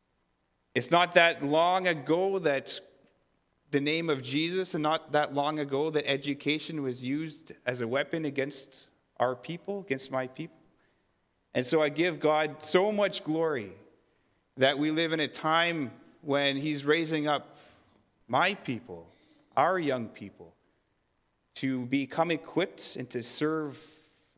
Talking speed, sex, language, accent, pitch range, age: 140 wpm, male, English, American, 130-165 Hz, 30-49